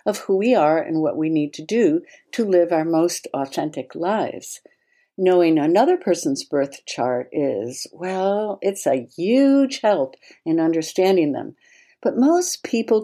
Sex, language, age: female, English, 60-79